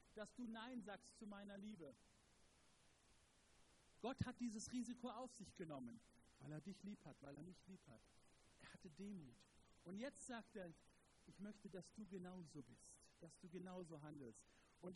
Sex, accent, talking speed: male, German, 170 wpm